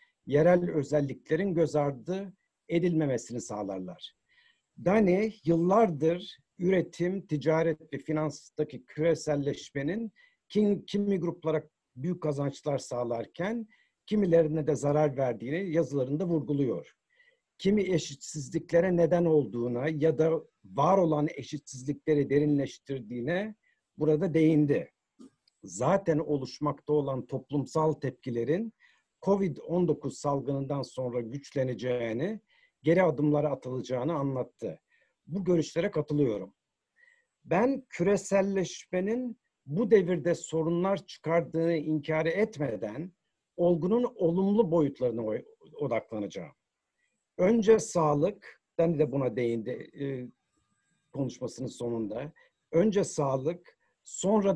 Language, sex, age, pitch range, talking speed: Turkish, male, 60-79, 140-185 Hz, 80 wpm